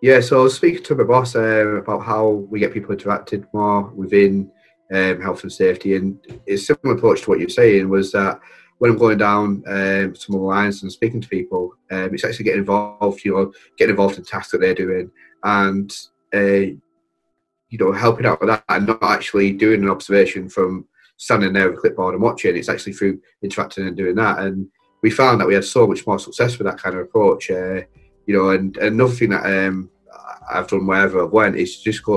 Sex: male